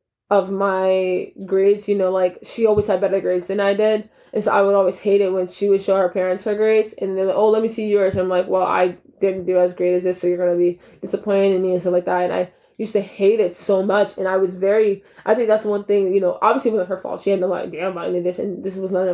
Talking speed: 290 wpm